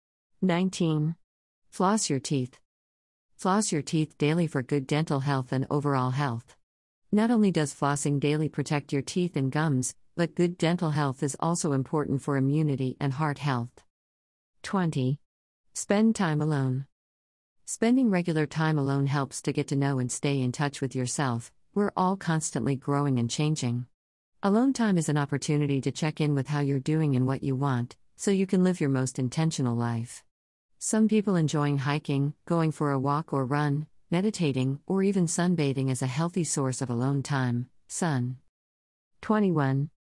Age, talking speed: 50-69, 165 wpm